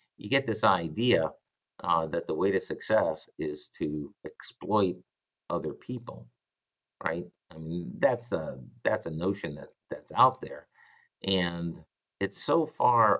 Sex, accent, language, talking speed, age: male, American, English, 140 wpm, 50-69